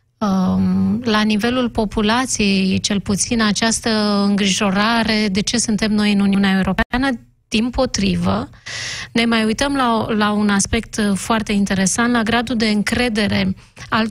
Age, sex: 30-49, female